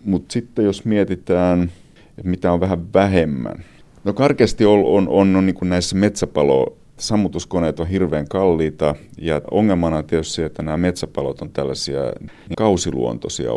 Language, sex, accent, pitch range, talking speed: Finnish, male, native, 80-95 Hz, 150 wpm